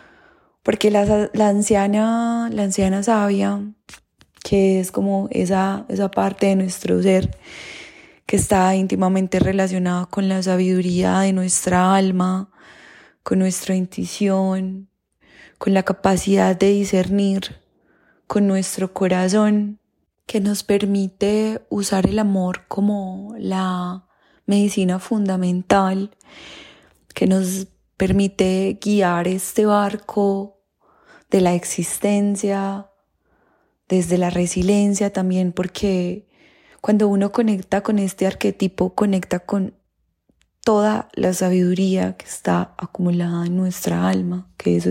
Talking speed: 105 wpm